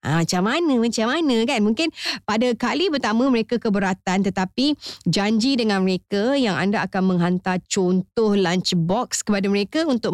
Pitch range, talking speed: 175-240 Hz, 150 wpm